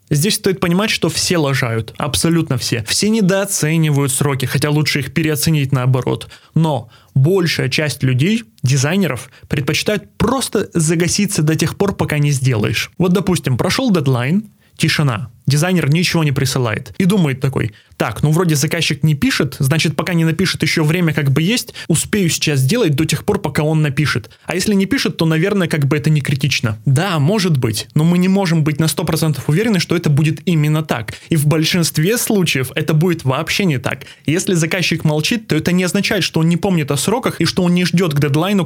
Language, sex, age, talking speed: Russian, male, 20-39, 190 wpm